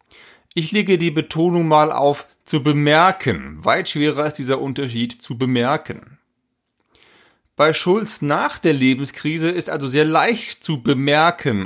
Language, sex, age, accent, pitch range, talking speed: German, male, 30-49, German, 120-165 Hz, 135 wpm